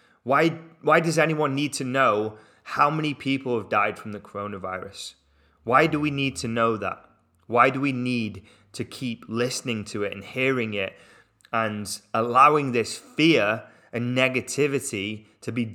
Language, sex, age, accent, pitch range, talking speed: English, male, 20-39, British, 110-135 Hz, 160 wpm